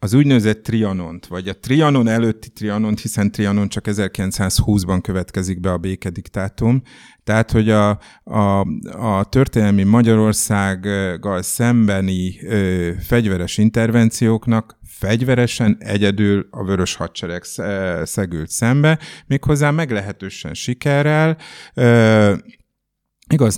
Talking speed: 90 wpm